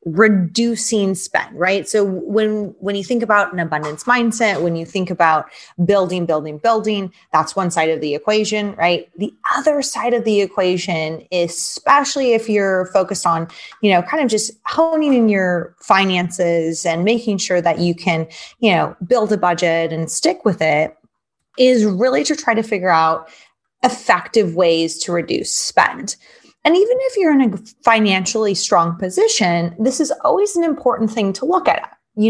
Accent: American